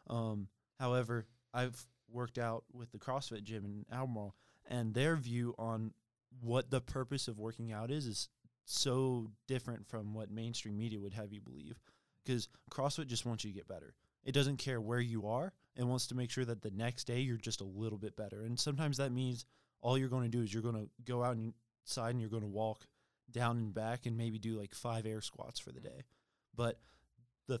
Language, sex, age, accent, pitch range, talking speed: English, male, 20-39, American, 110-125 Hz, 210 wpm